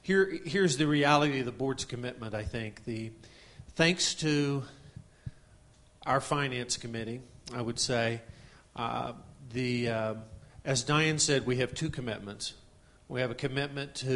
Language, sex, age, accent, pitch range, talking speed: English, male, 40-59, American, 120-145 Hz, 145 wpm